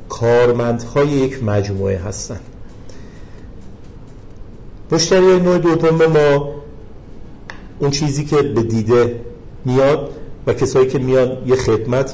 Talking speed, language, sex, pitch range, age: 105 wpm, Persian, male, 110-135 Hz, 50-69